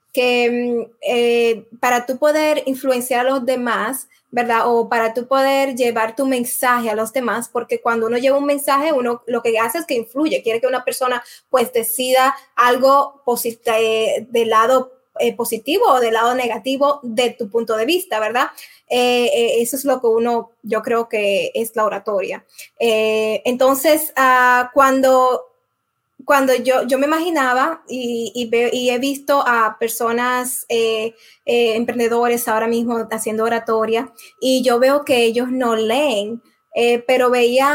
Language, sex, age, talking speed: Spanish, female, 20-39, 155 wpm